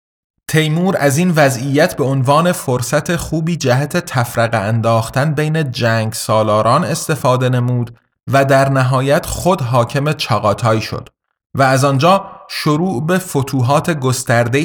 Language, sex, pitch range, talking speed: Persian, male, 120-155 Hz, 125 wpm